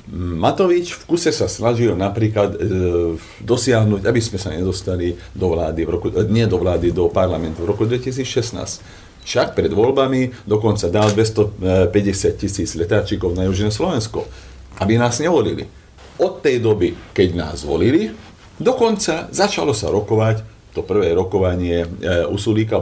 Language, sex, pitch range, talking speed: Slovak, male, 95-125 Hz, 140 wpm